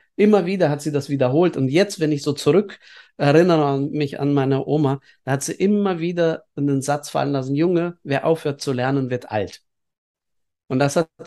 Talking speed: 190 wpm